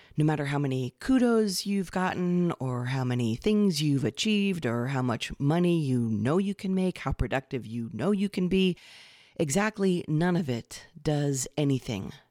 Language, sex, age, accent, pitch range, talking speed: English, female, 40-59, American, 135-180 Hz, 170 wpm